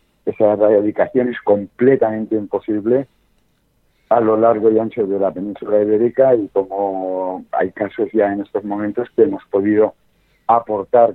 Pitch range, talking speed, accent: 100-120 Hz, 140 wpm, Spanish